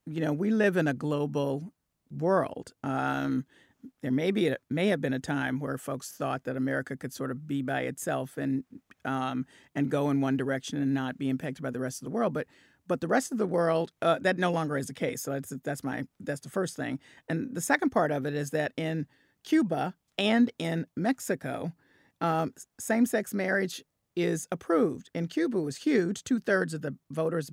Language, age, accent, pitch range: English, 40-59, American, 140-170 Hz